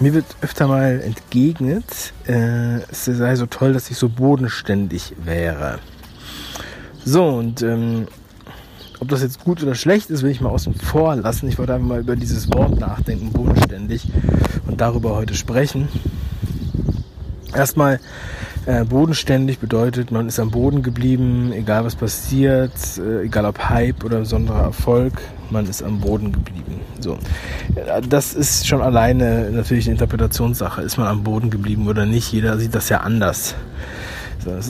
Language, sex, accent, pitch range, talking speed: German, male, German, 105-125 Hz, 155 wpm